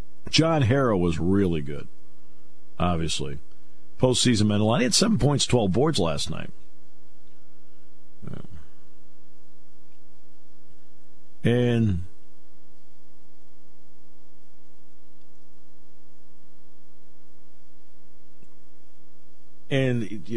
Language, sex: English, male